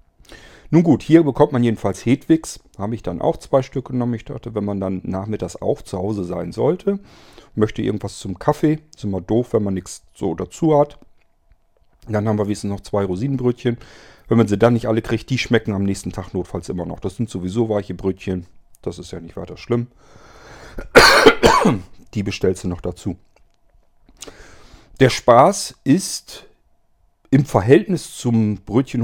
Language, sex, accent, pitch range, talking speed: German, male, German, 95-120 Hz, 175 wpm